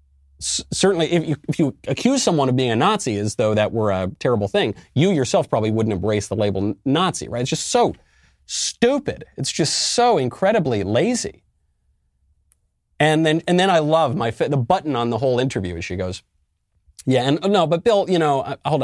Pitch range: 100-160 Hz